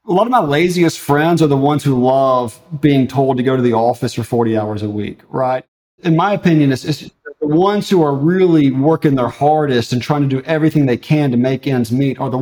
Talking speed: 240 wpm